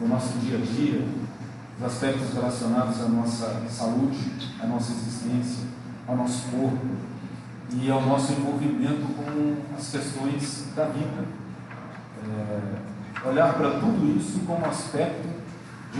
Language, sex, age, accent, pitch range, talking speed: Portuguese, male, 40-59, Brazilian, 115-140 Hz, 130 wpm